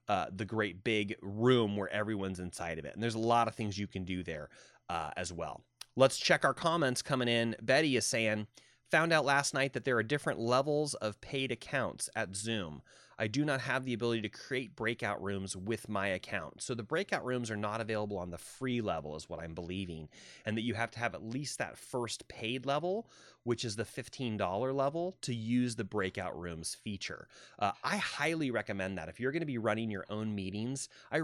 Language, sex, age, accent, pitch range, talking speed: English, male, 30-49, American, 105-125 Hz, 215 wpm